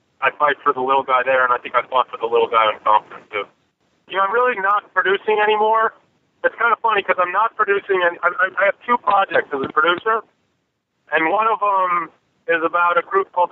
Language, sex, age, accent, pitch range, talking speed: English, male, 30-49, American, 155-195 Hz, 230 wpm